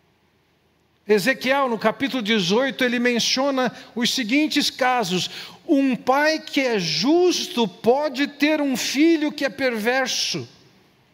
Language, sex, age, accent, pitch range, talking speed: Portuguese, male, 60-79, Brazilian, 175-280 Hz, 115 wpm